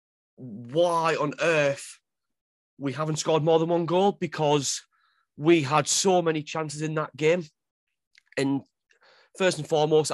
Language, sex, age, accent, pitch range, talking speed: English, male, 30-49, British, 130-155 Hz, 135 wpm